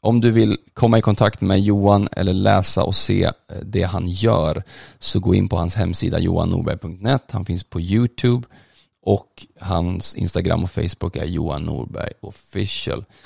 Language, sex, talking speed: English, male, 150 wpm